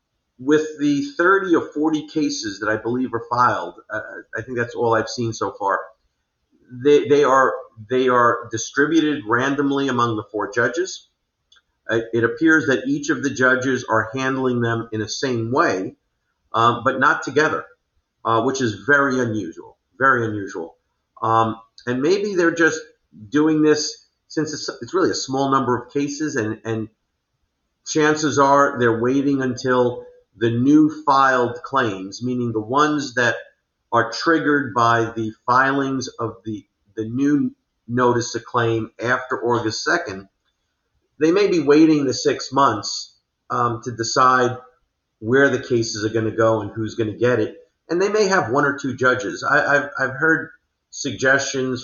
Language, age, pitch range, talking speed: English, 50-69, 115-145 Hz, 160 wpm